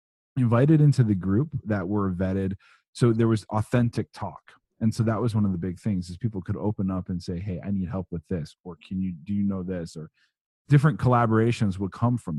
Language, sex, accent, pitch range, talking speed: English, male, American, 95-120 Hz, 230 wpm